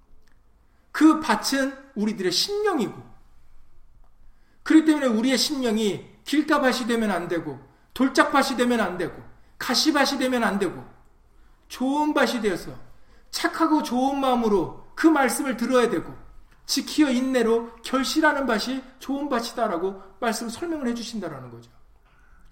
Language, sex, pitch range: Korean, male, 215-300 Hz